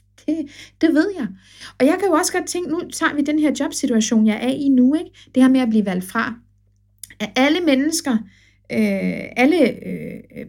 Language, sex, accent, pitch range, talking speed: Danish, female, native, 185-280 Hz, 200 wpm